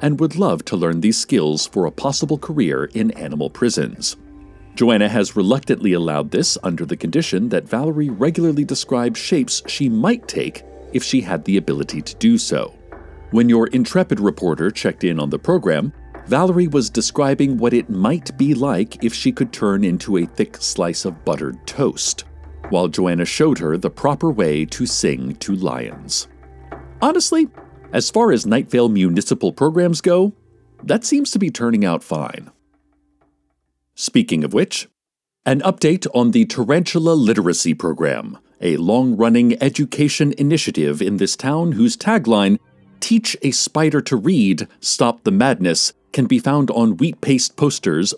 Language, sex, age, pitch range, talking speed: English, male, 50-69, 105-170 Hz, 160 wpm